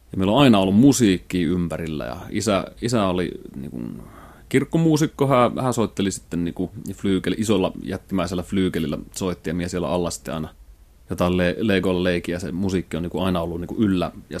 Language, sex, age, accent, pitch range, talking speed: Finnish, male, 30-49, native, 85-105 Hz, 185 wpm